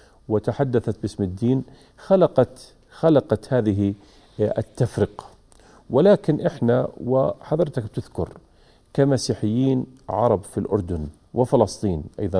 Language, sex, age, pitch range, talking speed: Arabic, male, 40-59, 105-125 Hz, 80 wpm